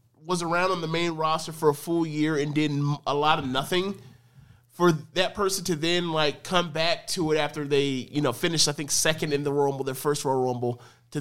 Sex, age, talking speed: male, 30-49, 230 wpm